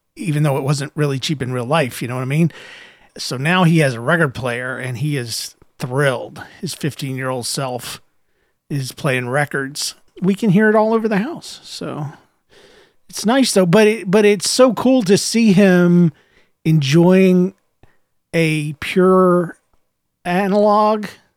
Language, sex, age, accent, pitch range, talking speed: English, male, 40-59, American, 155-195 Hz, 165 wpm